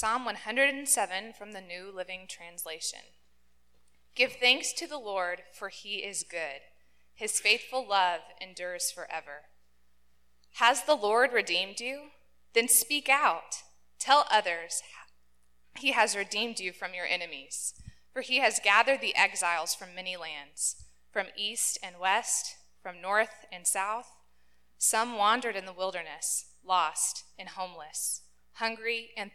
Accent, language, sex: American, English, female